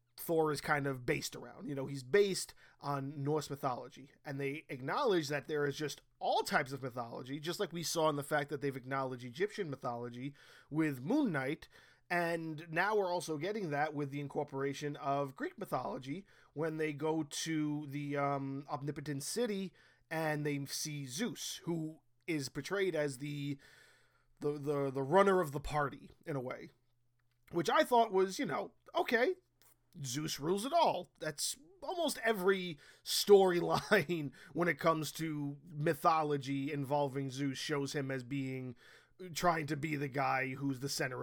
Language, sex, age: English, male, 20-39